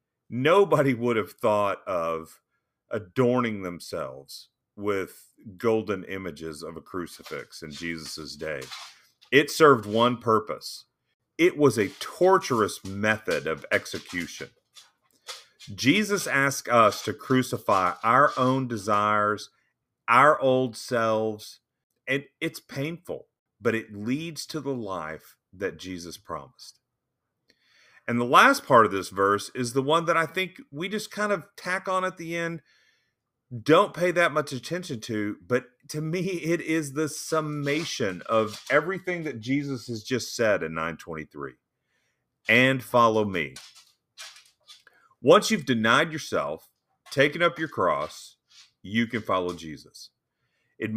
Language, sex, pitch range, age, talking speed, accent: English, male, 105-155 Hz, 40-59, 130 wpm, American